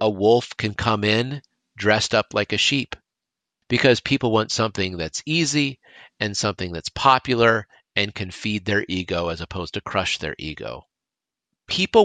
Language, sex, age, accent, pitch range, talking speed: English, male, 40-59, American, 105-150 Hz, 160 wpm